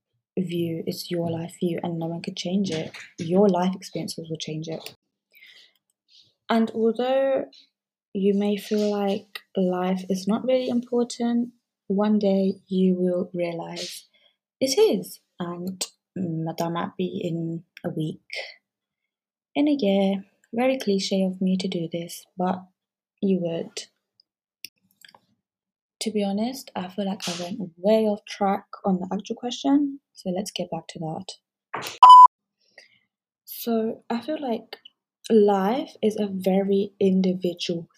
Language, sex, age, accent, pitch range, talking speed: English, female, 20-39, British, 175-215 Hz, 135 wpm